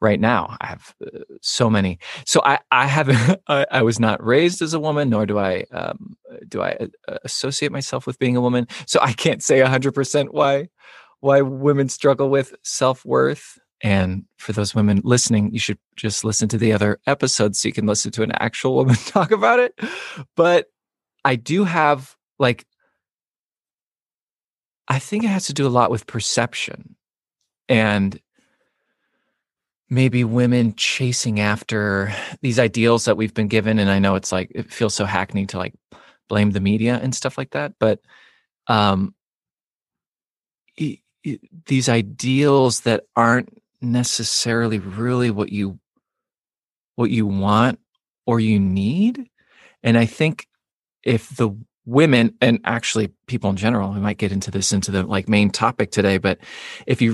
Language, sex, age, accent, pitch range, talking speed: English, male, 20-39, American, 105-135 Hz, 160 wpm